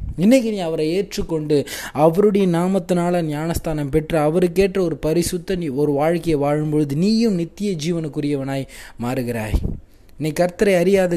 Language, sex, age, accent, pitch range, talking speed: Tamil, male, 20-39, native, 125-170 Hz, 120 wpm